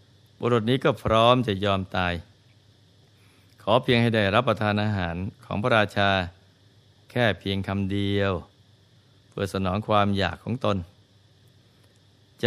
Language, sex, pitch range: Thai, male, 100-115 Hz